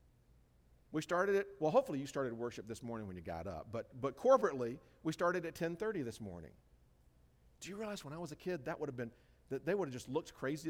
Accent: American